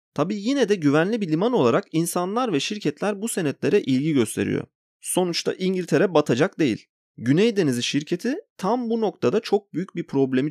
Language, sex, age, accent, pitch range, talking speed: Turkish, male, 30-49, native, 120-185 Hz, 160 wpm